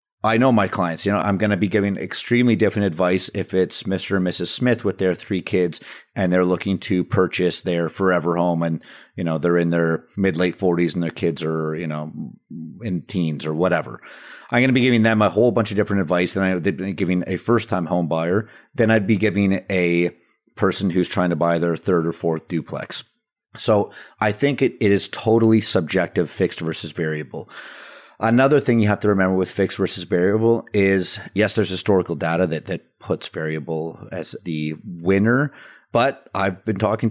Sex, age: male, 30-49